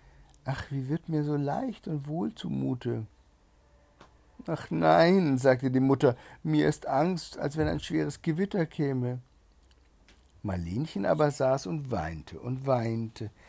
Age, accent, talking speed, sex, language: 60-79, German, 135 wpm, male, German